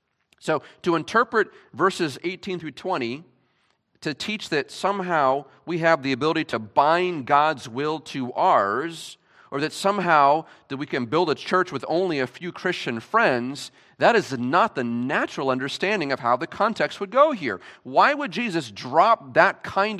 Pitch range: 130-190 Hz